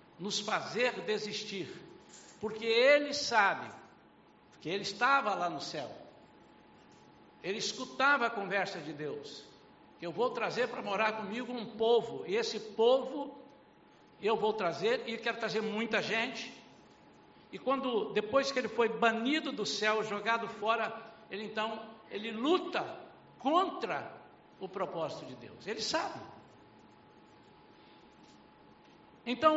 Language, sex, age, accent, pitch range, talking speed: Portuguese, male, 60-79, Brazilian, 180-235 Hz, 125 wpm